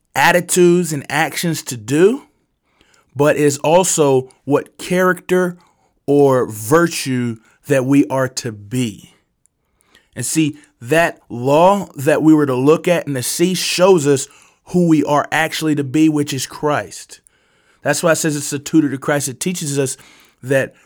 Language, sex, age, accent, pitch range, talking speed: English, male, 20-39, American, 135-160 Hz, 155 wpm